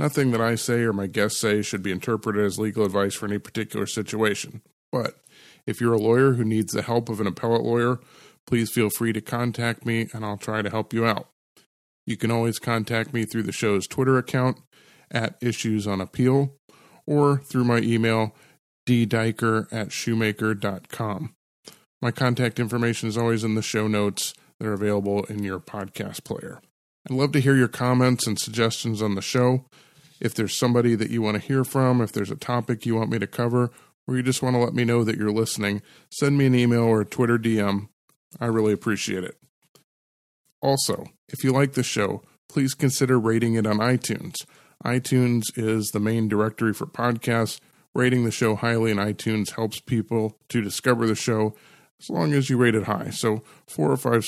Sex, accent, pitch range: male, American, 110-125 Hz